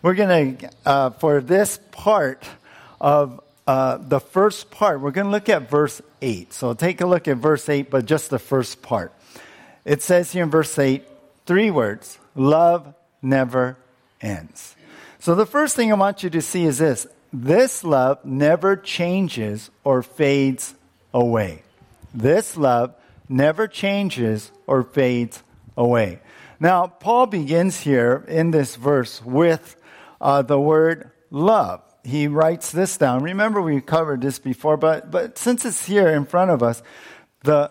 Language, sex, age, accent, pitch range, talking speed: English, male, 50-69, American, 130-175 Hz, 155 wpm